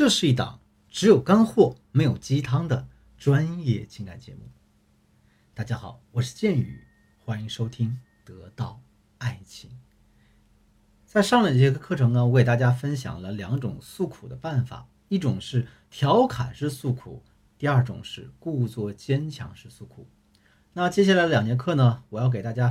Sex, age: male, 50-69